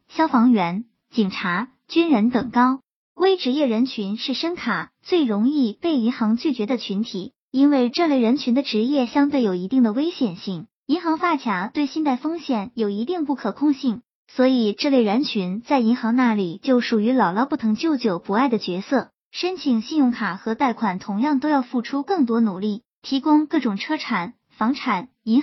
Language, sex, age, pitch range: Chinese, male, 20-39, 215-280 Hz